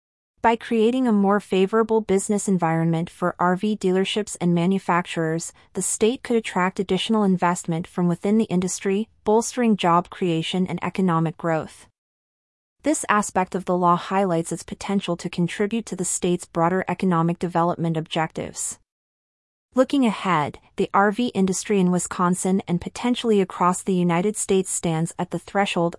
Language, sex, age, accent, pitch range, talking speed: English, female, 30-49, American, 170-205 Hz, 145 wpm